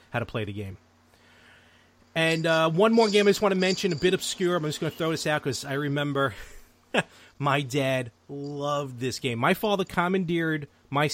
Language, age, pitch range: English, 30-49, 115-155 Hz